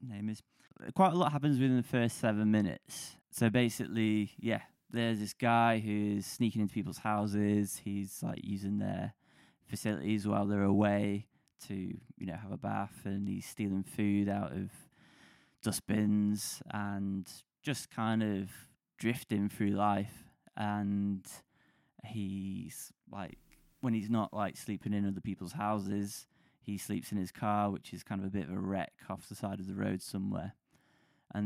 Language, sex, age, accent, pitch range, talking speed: English, male, 20-39, British, 100-110 Hz, 160 wpm